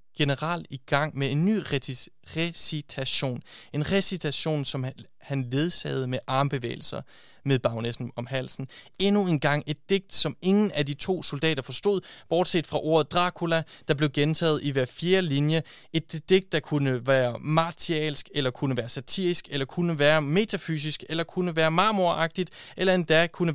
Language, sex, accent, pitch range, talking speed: Danish, male, native, 145-180 Hz, 160 wpm